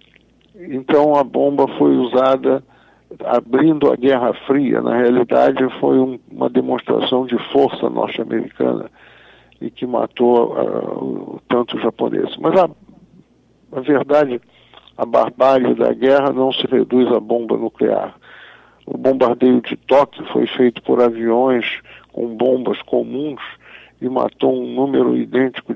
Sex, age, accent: male, 60-79, Brazilian